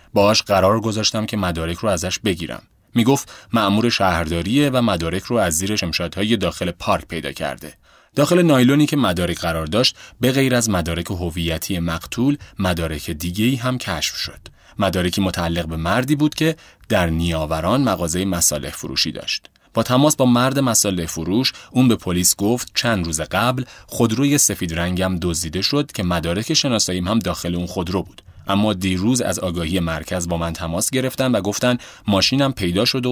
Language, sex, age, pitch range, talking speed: Persian, male, 30-49, 85-120 Hz, 165 wpm